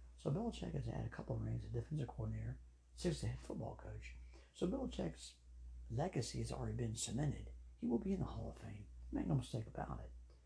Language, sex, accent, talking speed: English, male, American, 195 wpm